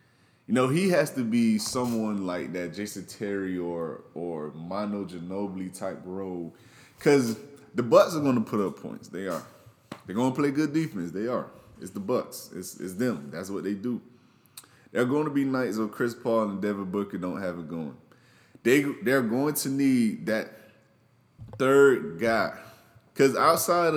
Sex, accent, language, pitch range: male, American, English, 95-130 Hz